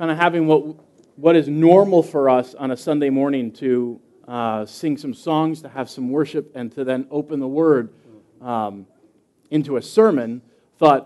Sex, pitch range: male, 120-155 Hz